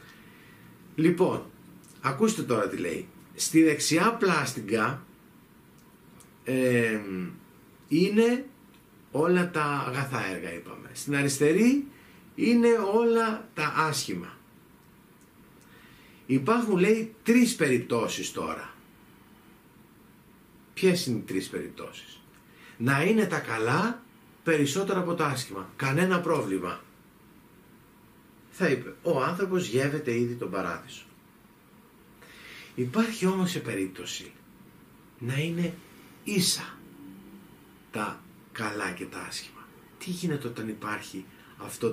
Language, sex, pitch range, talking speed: Greek, male, 120-185 Hz, 95 wpm